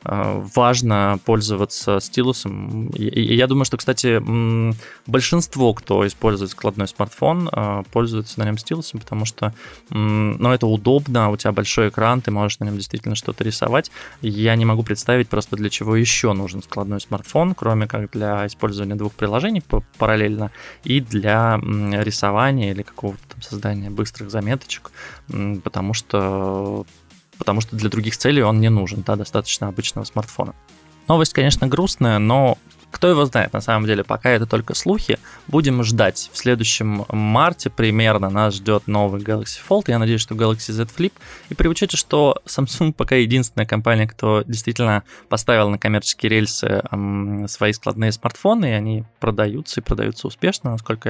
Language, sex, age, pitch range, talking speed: Russian, male, 20-39, 105-125 Hz, 150 wpm